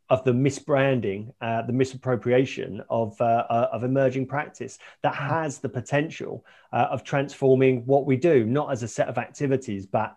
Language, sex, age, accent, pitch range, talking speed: English, male, 40-59, British, 125-155 Hz, 165 wpm